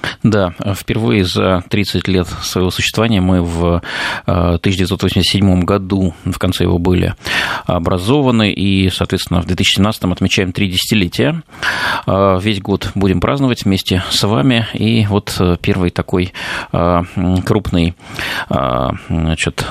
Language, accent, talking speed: Russian, native, 110 wpm